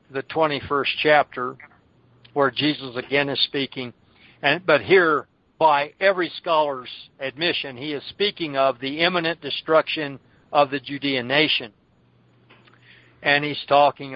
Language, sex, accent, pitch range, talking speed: English, male, American, 135-160 Hz, 125 wpm